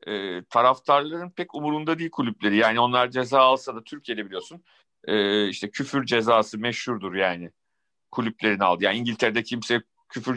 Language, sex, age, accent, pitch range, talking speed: Turkish, male, 50-69, native, 120-155 Hz, 145 wpm